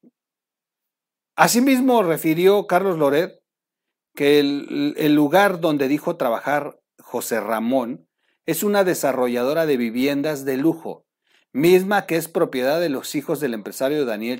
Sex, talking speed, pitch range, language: male, 125 wpm, 130-185 Hz, Spanish